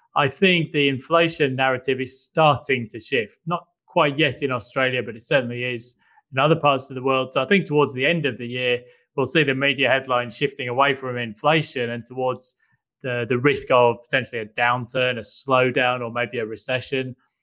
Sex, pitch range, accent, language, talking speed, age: male, 125-150 Hz, British, English, 195 wpm, 20-39